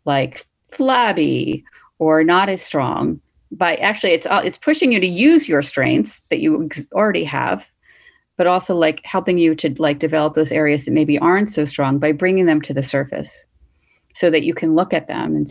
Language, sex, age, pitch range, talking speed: English, female, 40-59, 145-170 Hz, 190 wpm